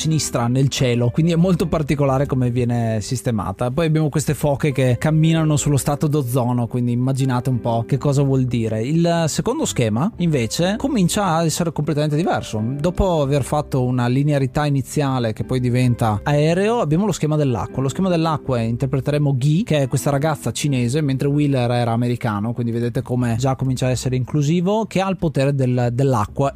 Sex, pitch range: male, 125-160 Hz